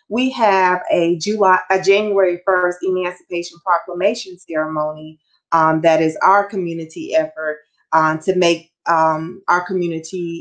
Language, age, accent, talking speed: English, 30-49, American, 125 wpm